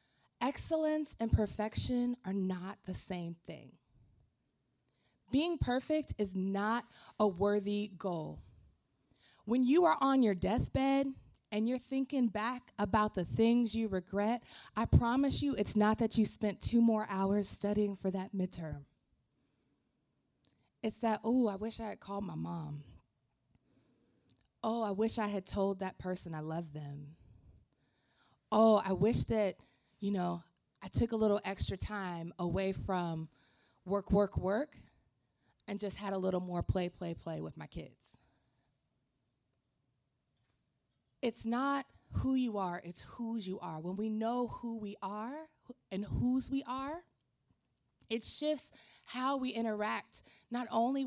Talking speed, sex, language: 140 wpm, female, English